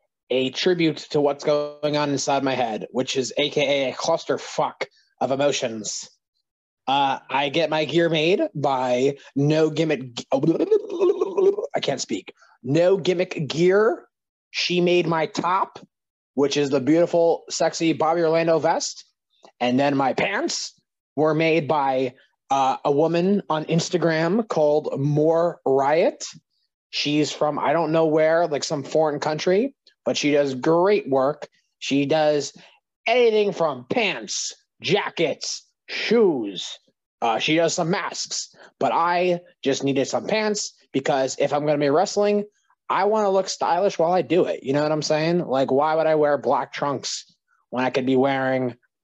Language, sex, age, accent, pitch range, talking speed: English, male, 20-39, American, 140-175 Hz, 150 wpm